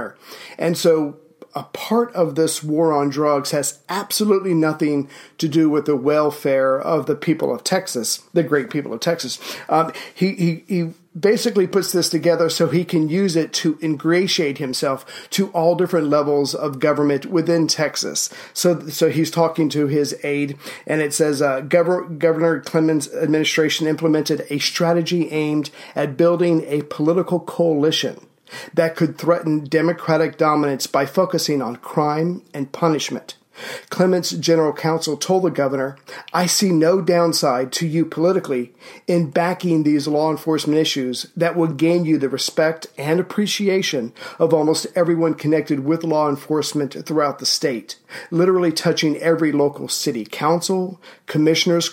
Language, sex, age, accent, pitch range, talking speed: English, male, 40-59, American, 150-170 Hz, 150 wpm